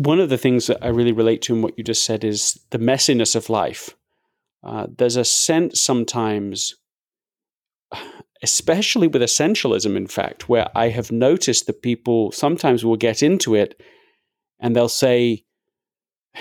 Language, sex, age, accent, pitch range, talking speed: English, male, 40-59, British, 120-155 Hz, 155 wpm